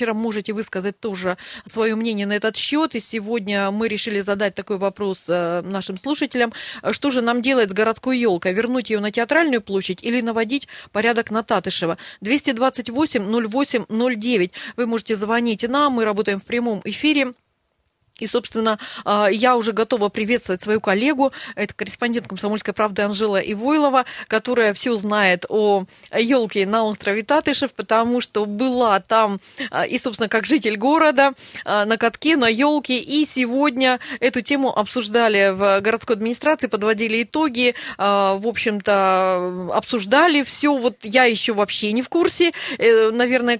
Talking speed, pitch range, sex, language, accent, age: 140 wpm, 210-255 Hz, female, Russian, native, 30-49